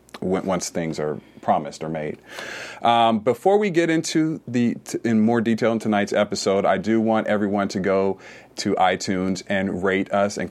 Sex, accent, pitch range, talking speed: male, American, 90-110 Hz, 175 wpm